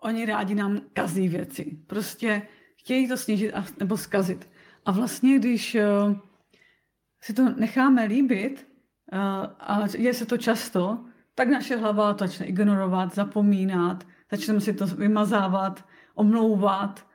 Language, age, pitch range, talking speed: Czech, 30-49, 195-230 Hz, 135 wpm